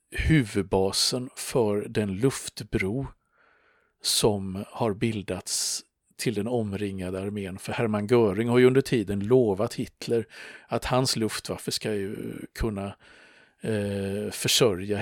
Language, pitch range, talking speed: Swedish, 100-115 Hz, 110 wpm